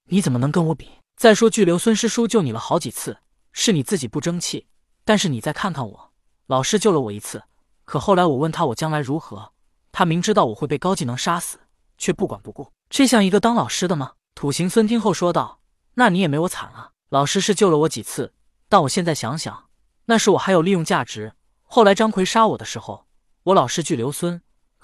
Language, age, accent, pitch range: Chinese, 20-39, native, 140-200 Hz